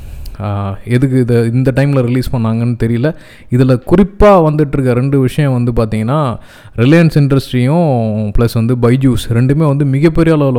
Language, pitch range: Tamil, 120-155 Hz